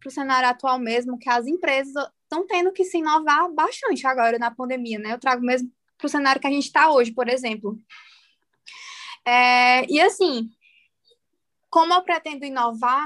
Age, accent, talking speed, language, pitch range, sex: 10-29, Brazilian, 170 wpm, Portuguese, 245-295 Hz, female